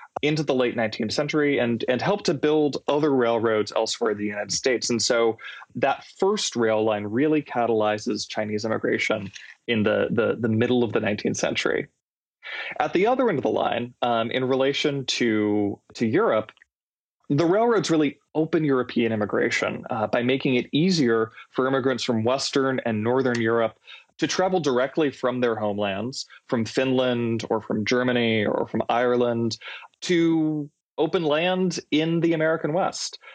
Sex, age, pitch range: male, 20-39, 115-145 Hz